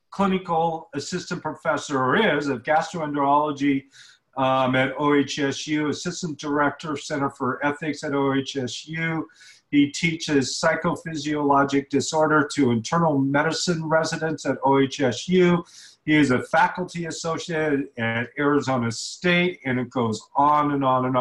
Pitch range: 135-170 Hz